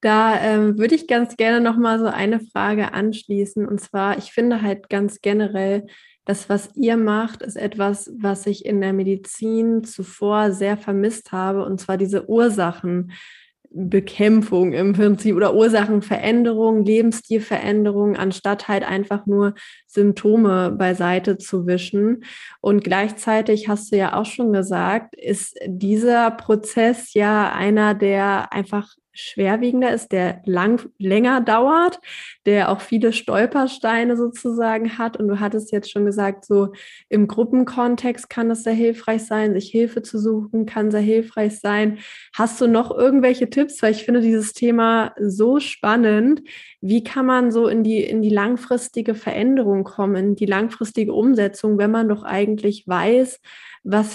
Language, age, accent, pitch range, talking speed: German, 20-39, German, 200-230 Hz, 145 wpm